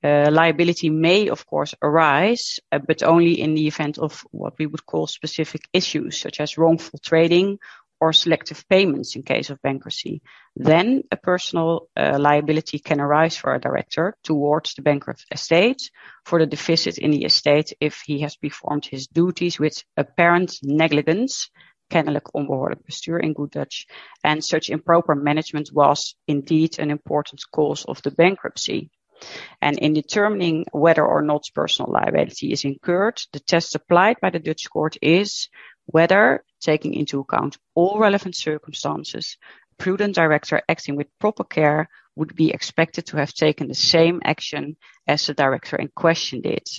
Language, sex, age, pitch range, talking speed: German, female, 30-49, 150-170 Hz, 160 wpm